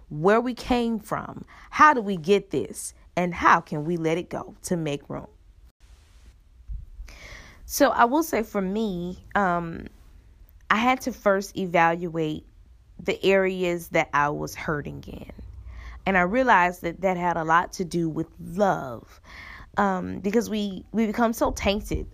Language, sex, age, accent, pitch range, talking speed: English, female, 20-39, American, 155-210 Hz, 155 wpm